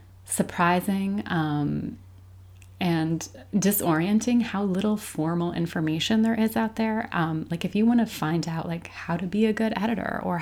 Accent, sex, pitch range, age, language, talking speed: American, female, 155-185 Hz, 30-49, English, 160 wpm